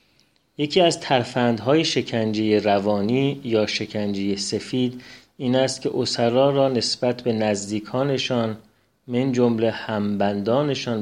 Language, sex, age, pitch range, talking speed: Persian, male, 30-49, 110-130 Hz, 105 wpm